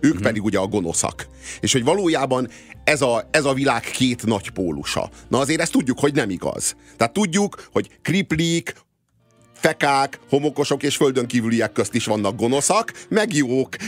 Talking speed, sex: 165 wpm, male